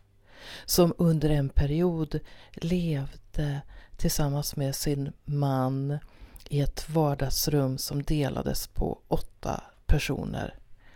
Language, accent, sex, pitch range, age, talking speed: Swedish, native, female, 130-175 Hz, 40-59, 95 wpm